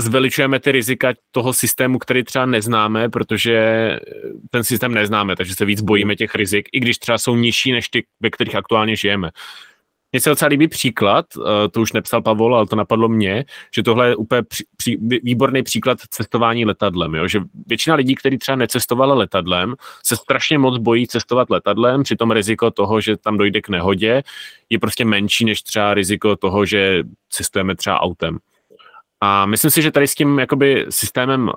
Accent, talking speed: native, 180 wpm